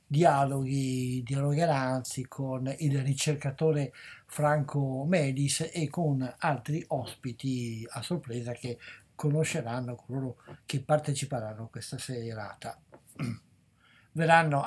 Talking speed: 90 wpm